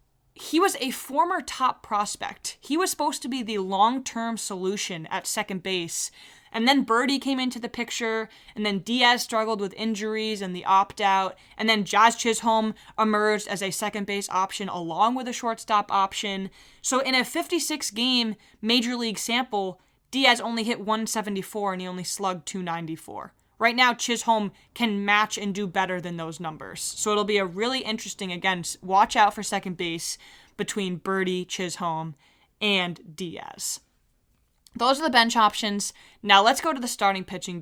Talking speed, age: 165 wpm, 20-39